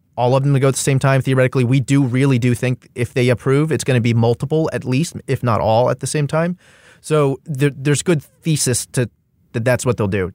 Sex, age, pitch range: male, 30-49, 115-140 Hz